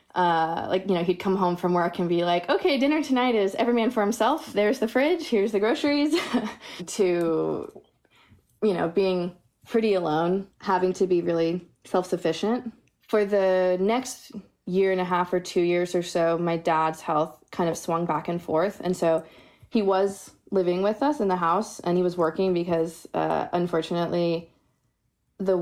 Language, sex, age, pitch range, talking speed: English, female, 20-39, 165-195 Hz, 180 wpm